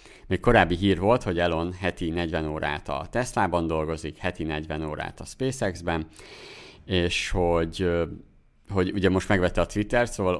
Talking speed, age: 150 wpm, 50-69